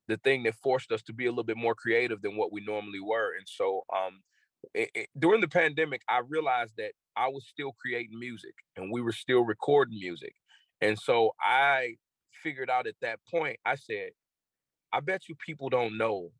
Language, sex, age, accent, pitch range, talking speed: English, male, 30-49, American, 110-140 Hz, 195 wpm